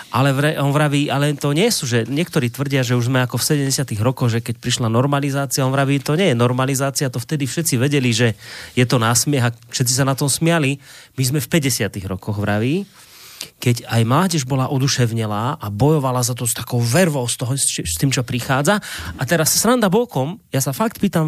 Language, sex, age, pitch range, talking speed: Slovak, male, 30-49, 130-165 Hz, 200 wpm